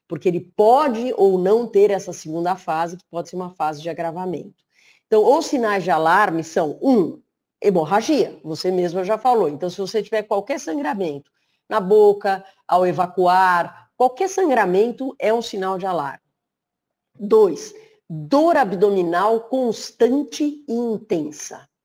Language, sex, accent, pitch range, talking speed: Portuguese, female, Brazilian, 175-230 Hz, 140 wpm